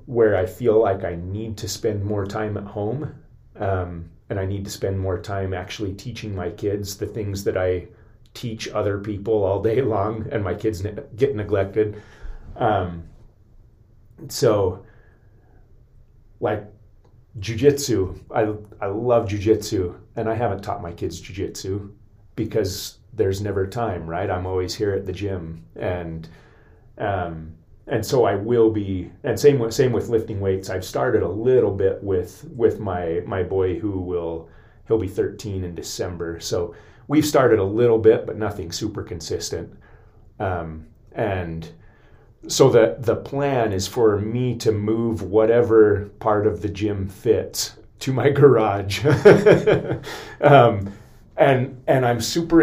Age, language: 30-49, English